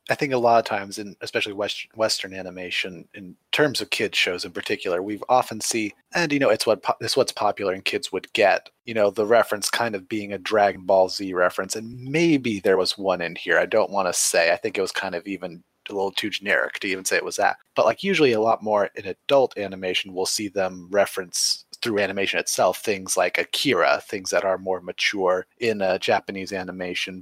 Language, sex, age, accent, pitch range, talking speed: English, male, 30-49, American, 100-130 Hz, 225 wpm